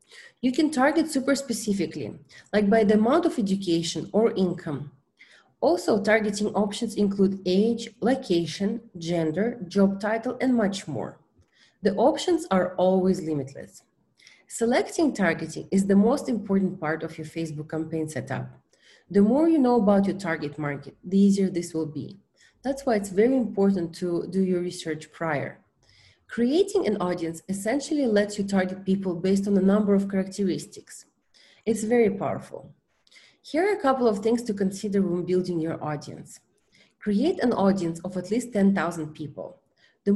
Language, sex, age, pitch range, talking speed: English, female, 30-49, 165-225 Hz, 150 wpm